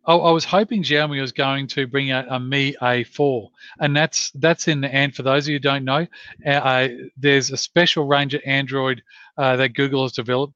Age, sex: 40-59, male